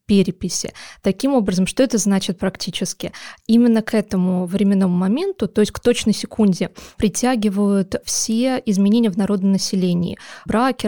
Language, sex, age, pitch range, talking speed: Russian, female, 20-39, 190-220 Hz, 130 wpm